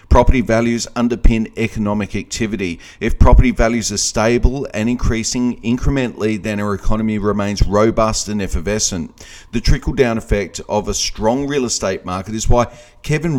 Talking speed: 145 wpm